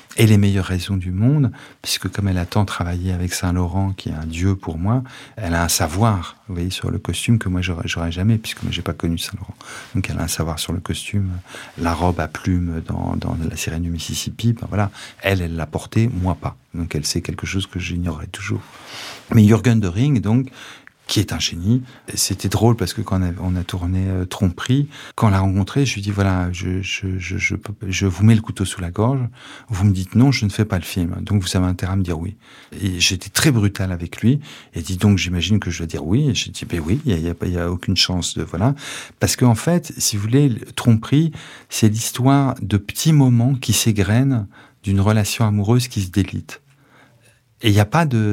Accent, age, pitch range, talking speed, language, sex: French, 50-69, 90-120 Hz, 235 wpm, French, male